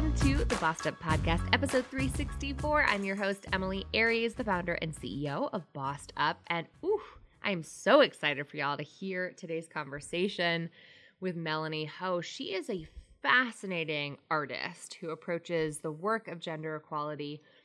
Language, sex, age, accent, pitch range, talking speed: English, female, 20-39, American, 160-225 Hz, 155 wpm